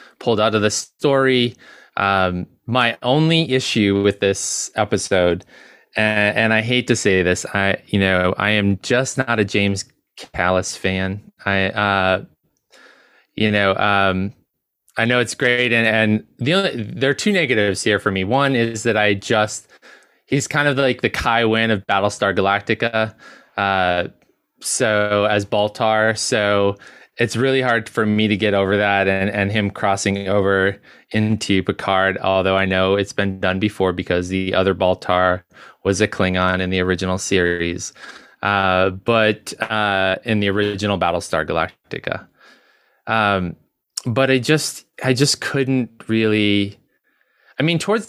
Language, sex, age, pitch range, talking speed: English, male, 20-39, 95-115 Hz, 155 wpm